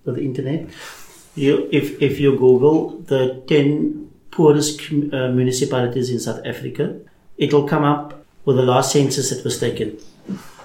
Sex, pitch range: male, 130-150 Hz